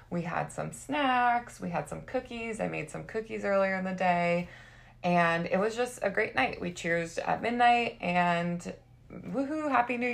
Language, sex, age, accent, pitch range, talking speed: English, female, 20-39, American, 160-210 Hz, 185 wpm